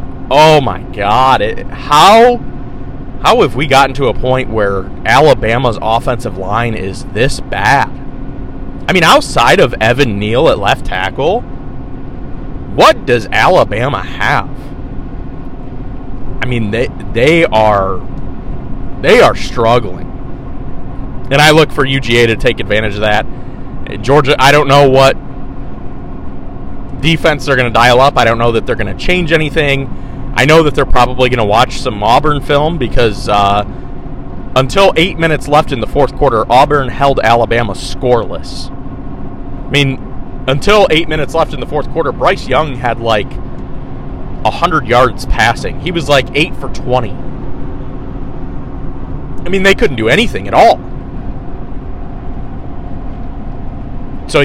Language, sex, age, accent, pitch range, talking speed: English, male, 30-49, American, 110-145 Hz, 140 wpm